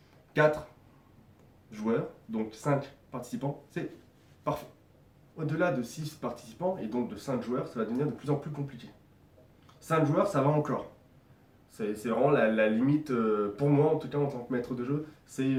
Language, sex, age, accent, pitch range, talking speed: French, male, 20-39, French, 120-150 Hz, 180 wpm